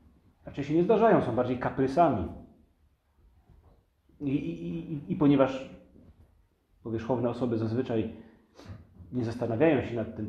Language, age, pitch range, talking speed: Polish, 40-59, 90-135 Hz, 105 wpm